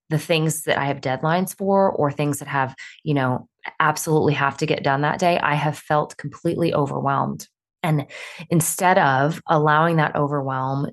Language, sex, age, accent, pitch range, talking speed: English, female, 20-39, American, 135-160 Hz, 170 wpm